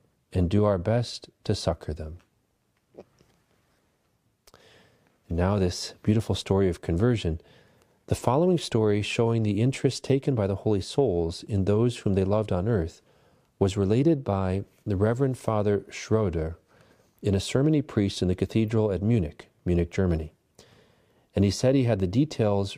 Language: English